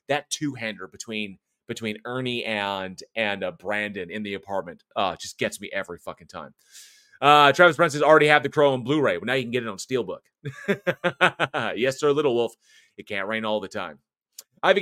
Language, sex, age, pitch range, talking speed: English, male, 30-49, 115-160 Hz, 205 wpm